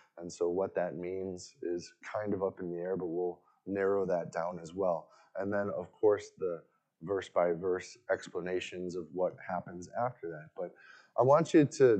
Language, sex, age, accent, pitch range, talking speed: English, male, 30-49, American, 90-150 Hz, 180 wpm